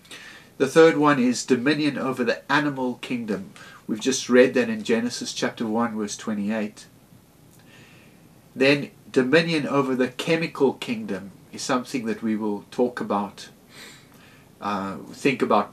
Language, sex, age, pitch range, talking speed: English, male, 50-69, 120-150 Hz, 135 wpm